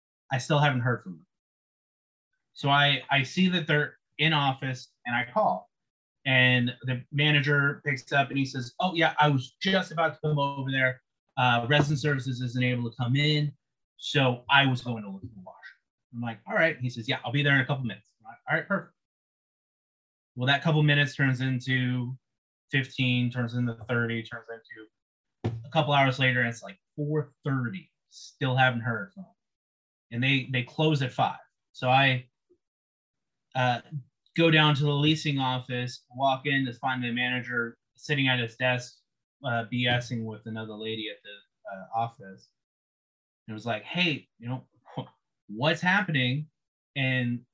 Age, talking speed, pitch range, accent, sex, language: 30-49, 175 wpm, 120-145 Hz, American, male, English